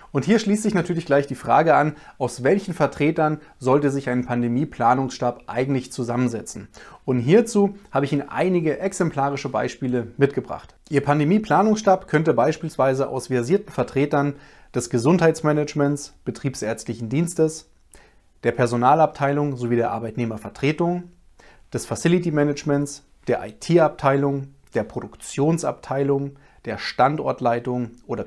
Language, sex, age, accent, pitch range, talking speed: German, male, 30-49, German, 130-175 Hz, 115 wpm